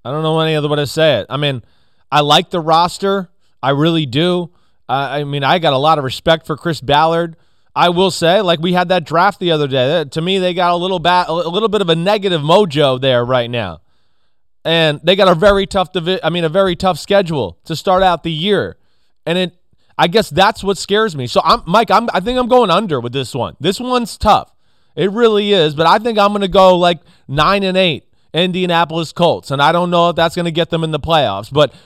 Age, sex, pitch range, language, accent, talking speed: 30-49, male, 155-200 Hz, English, American, 245 wpm